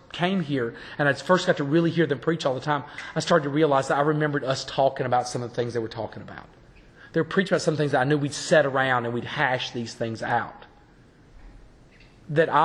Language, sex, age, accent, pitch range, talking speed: English, male, 40-59, American, 140-185 Hz, 240 wpm